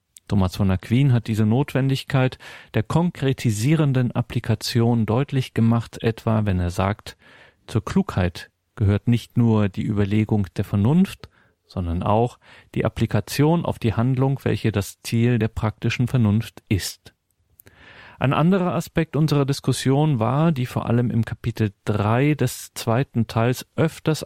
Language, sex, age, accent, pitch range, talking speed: German, male, 40-59, German, 105-130 Hz, 135 wpm